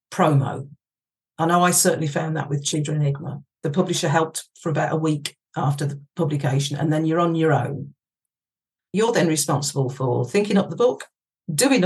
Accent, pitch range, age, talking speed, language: British, 155-200 Hz, 50-69, 175 wpm, English